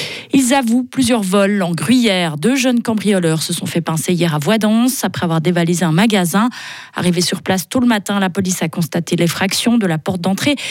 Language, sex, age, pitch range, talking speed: French, female, 20-39, 175-230 Hz, 200 wpm